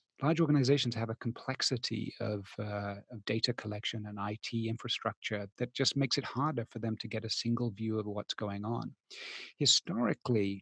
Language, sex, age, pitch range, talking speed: English, male, 30-49, 110-140 Hz, 165 wpm